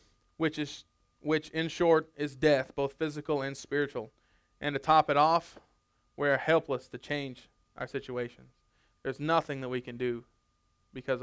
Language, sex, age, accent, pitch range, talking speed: English, male, 20-39, American, 130-155 Hz, 155 wpm